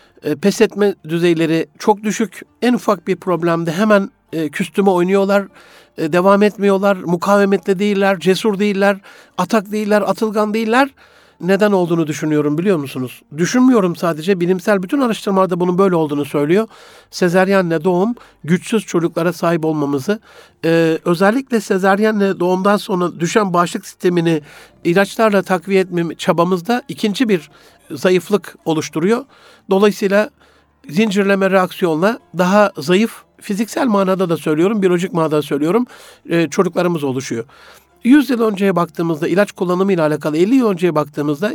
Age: 60-79